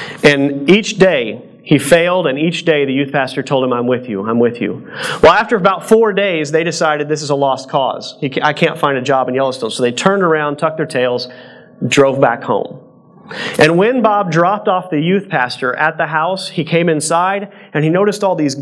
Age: 40-59